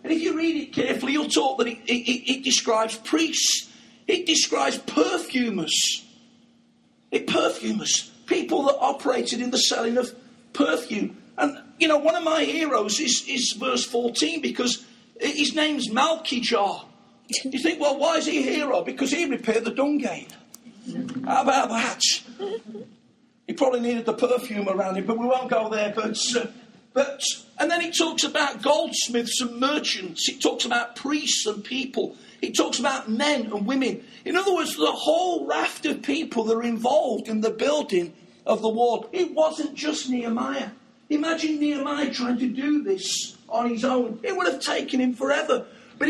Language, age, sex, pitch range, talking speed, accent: English, 40-59, male, 235-295 Hz, 170 wpm, British